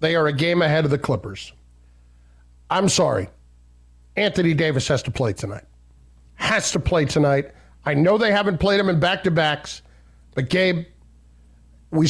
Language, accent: English, American